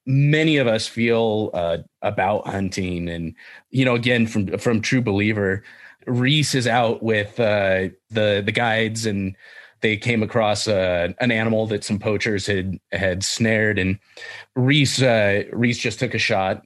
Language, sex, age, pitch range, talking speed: English, male, 30-49, 100-125 Hz, 160 wpm